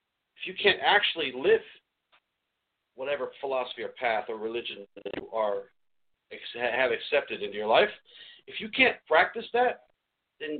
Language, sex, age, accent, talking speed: English, male, 40-59, American, 135 wpm